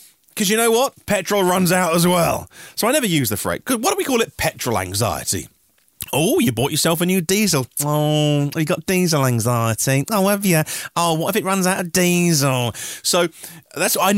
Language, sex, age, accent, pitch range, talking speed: English, male, 30-49, British, 120-180 Hz, 205 wpm